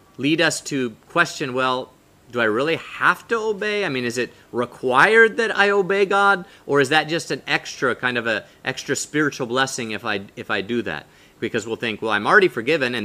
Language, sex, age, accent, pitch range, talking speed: English, male, 30-49, American, 130-175 Hz, 210 wpm